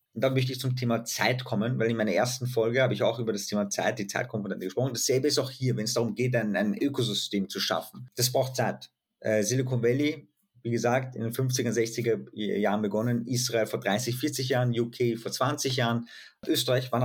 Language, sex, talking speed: German, male, 215 wpm